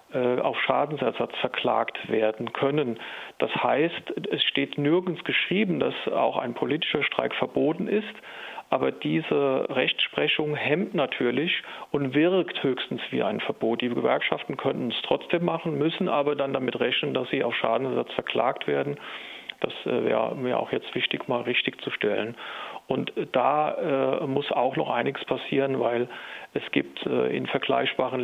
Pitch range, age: 125-150 Hz, 40-59